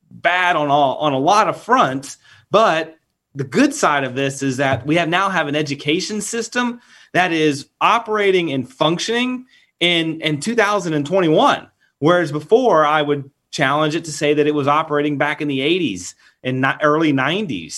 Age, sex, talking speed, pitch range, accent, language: 30-49, male, 170 wpm, 140-180 Hz, American, English